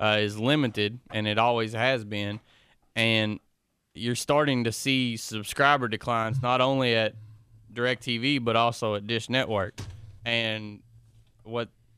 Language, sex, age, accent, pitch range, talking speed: English, male, 20-39, American, 110-125 Hz, 135 wpm